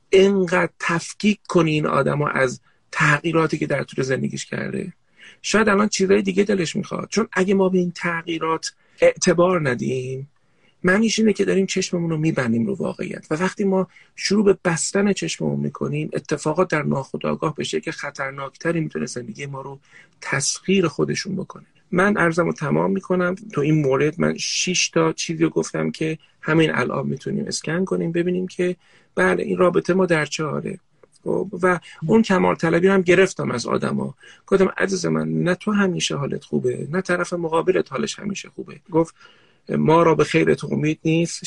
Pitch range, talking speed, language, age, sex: 155-195 Hz, 170 wpm, Persian, 40-59, male